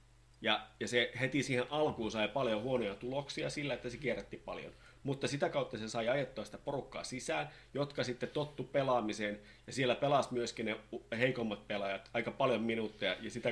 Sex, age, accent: male, 30-49, native